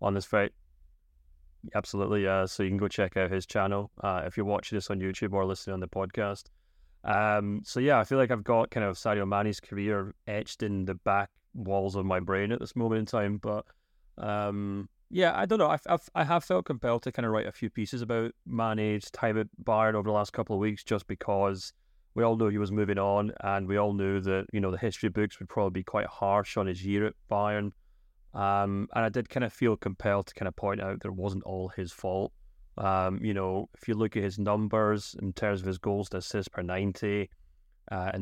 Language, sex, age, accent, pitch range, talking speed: English, male, 30-49, British, 95-110 Hz, 235 wpm